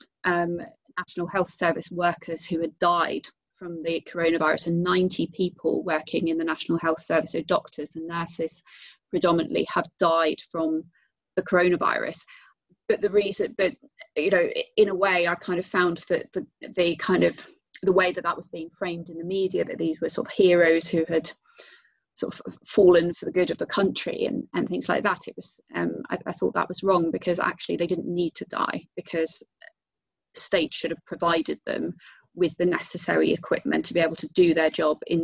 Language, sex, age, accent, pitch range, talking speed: English, female, 30-49, British, 165-185 Hz, 195 wpm